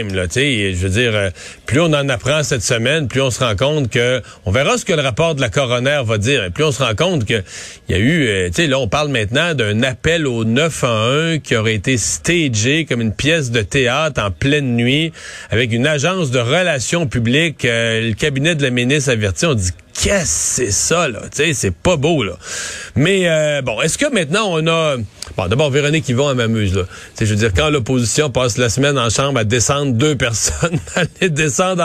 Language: French